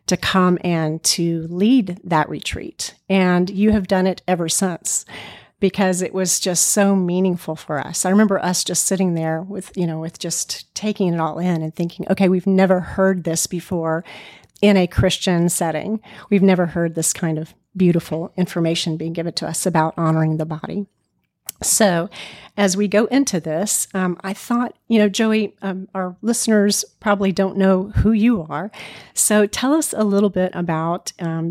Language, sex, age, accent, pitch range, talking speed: English, female, 40-59, American, 165-195 Hz, 180 wpm